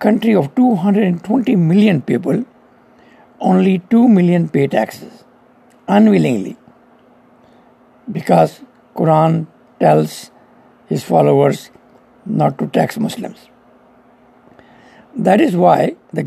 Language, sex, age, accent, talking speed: English, male, 60-79, Indian, 90 wpm